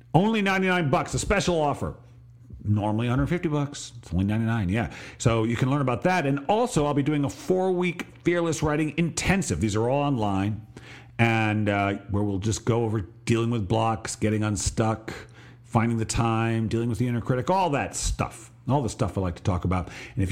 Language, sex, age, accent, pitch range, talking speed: English, male, 50-69, American, 105-140 Hz, 200 wpm